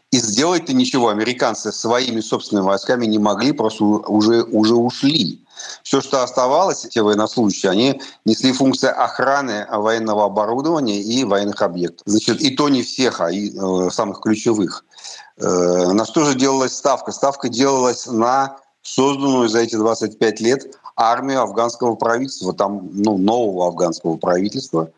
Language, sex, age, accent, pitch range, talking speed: Russian, male, 50-69, native, 90-125 Hz, 135 wpm